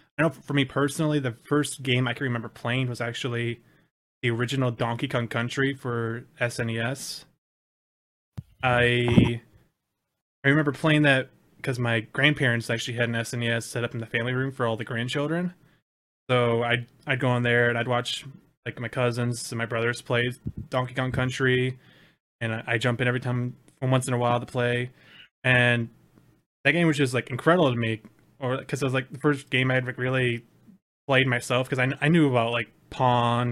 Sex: male